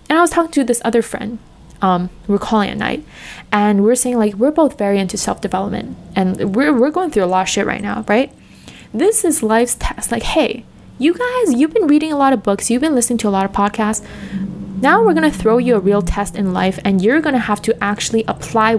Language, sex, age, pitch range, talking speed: English, female, 20-39, 195-260 Hz, 245 wpm